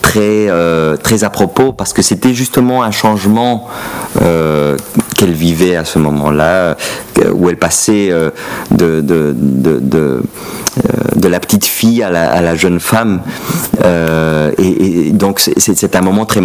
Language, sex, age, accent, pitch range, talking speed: French, male, 40-59, French, 80-100 Hz, 170 wpm